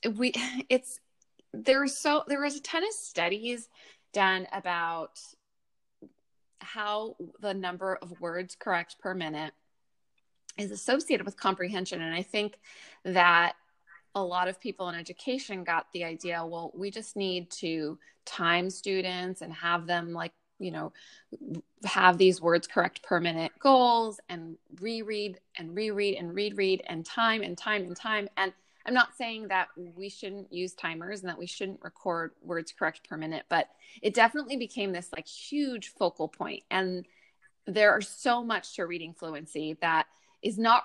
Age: 20-39